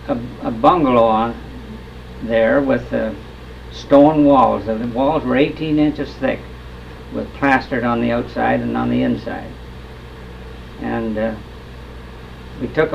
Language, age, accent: English, 60-79, American